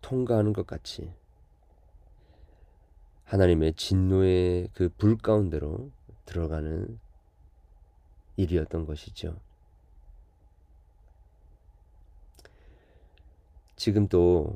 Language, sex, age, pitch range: Korean, male, 40-59, 75-95 Hz